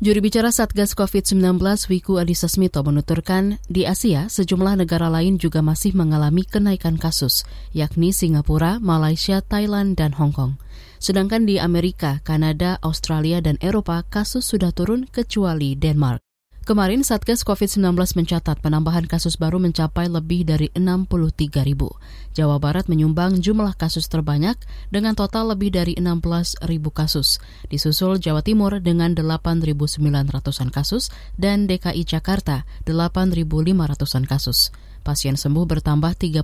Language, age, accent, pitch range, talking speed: Indonesian, 20-39, native, 155-195 Hz, 120 wpm